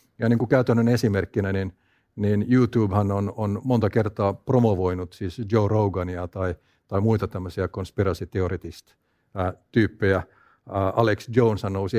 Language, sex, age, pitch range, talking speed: Finnish, male, 50-69, 95-120 Hz, 120 wpm